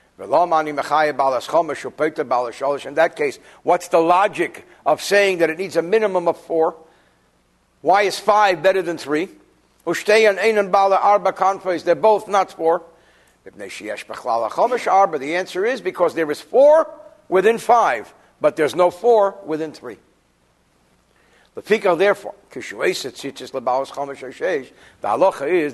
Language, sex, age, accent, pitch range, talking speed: English, male, 60-79, American, 165-220 Hz, 100 wpm